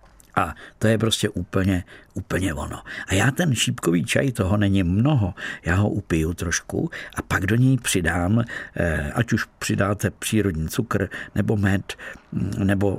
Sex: male